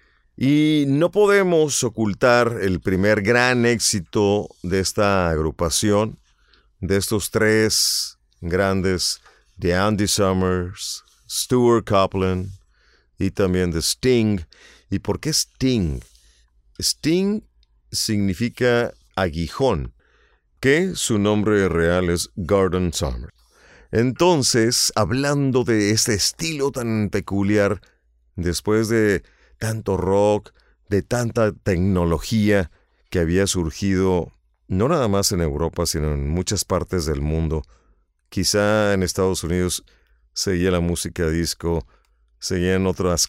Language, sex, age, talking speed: Spanish, male, 40-59, 105 wpm